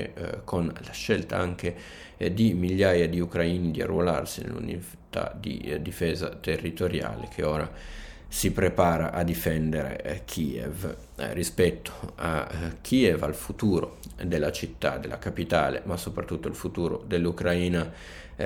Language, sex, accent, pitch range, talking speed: Italian, male, native, 80-90 Hz, 135 wpm